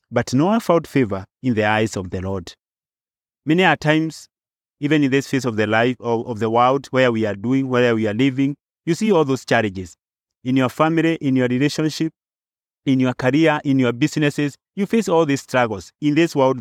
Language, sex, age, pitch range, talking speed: English, male, 30-49, 120-160 Hz, 205 wpm